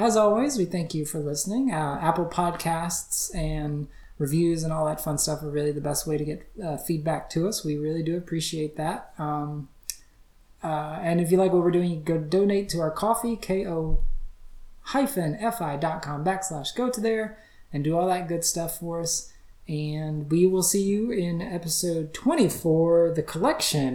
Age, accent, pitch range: 20-39, American, 155-200 Hz